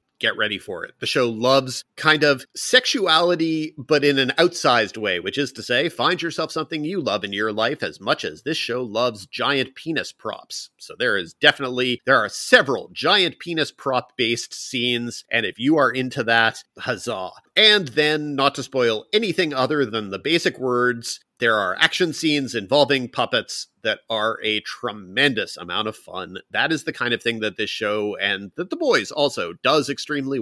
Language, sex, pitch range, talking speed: English, male, 110-150 Hz, 185 wpm